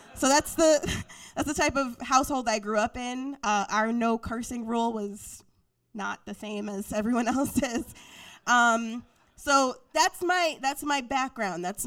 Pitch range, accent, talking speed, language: 205-255 Hz, American, 160 wpm, English